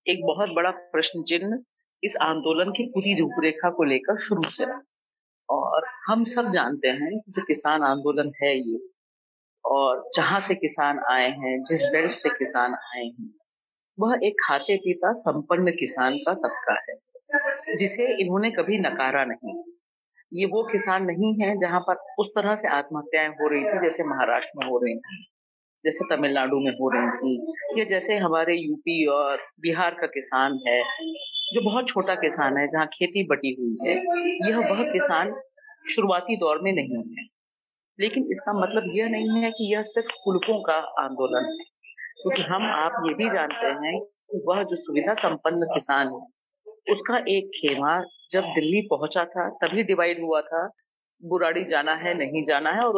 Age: 40-59